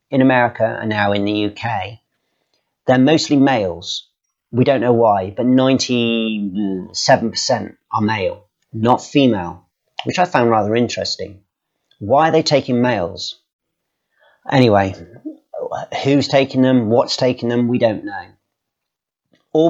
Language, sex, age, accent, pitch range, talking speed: English, male, 40-59, British, 105-130 Hz, 125 wpm